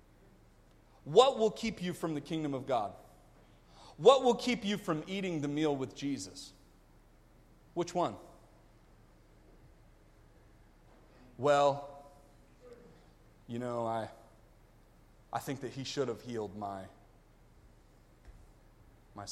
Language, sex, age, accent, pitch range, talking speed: English, male, 30-49, American, 110-145 Hz, 105 wpm